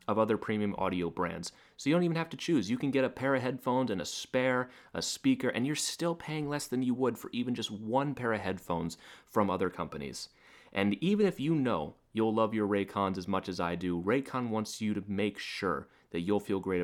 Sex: male